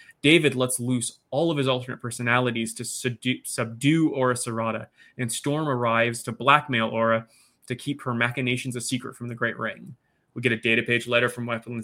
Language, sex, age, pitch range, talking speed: English, male, 20-39, 125-160 Hz, 190 wpm